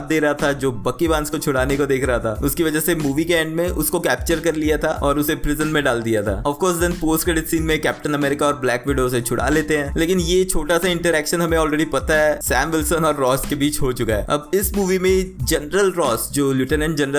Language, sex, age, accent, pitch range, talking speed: Hindi, male, 20-39, native, 145-170 Hz, 135 wpm